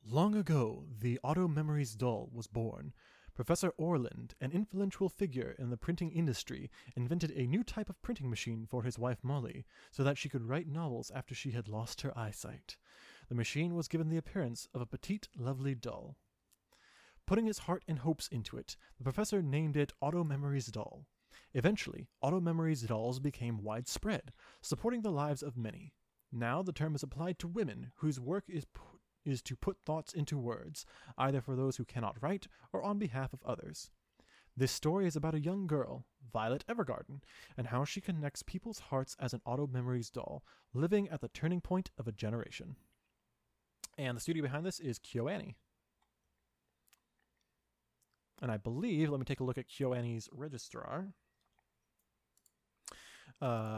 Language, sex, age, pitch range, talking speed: English, male, 20-39, 120-165 Hz, 165 wpm